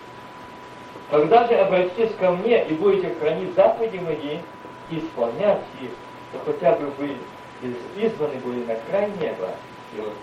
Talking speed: 135 wpm